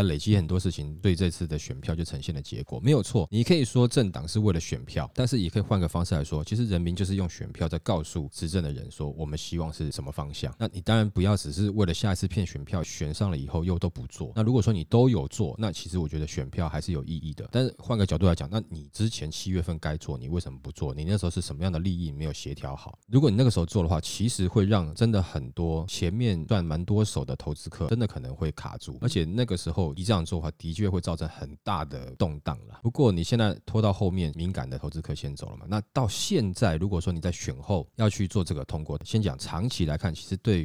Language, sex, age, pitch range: Chinese, male, 20-39, 80-105 Hz